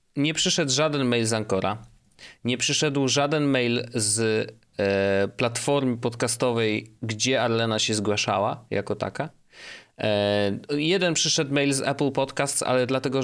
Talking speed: 120 wpm